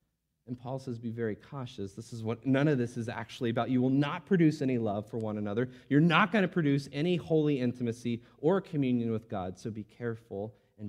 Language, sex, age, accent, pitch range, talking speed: English, male, 30-49, American, 100-130 Hz, 220 wpm